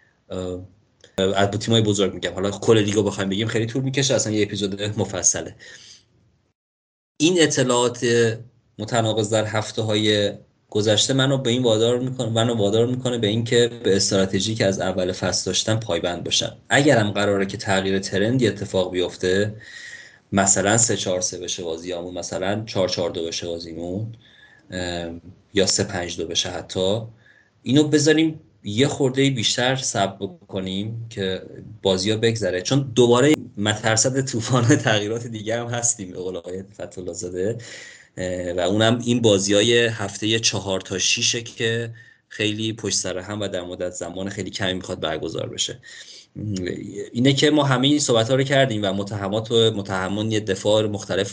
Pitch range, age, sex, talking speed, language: 95-115 Hz, 30-49, male, 145 wpm, Persian